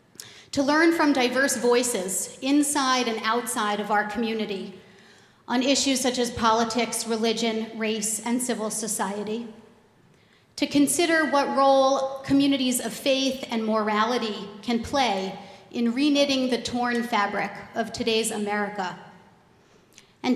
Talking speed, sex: 120 wpm, female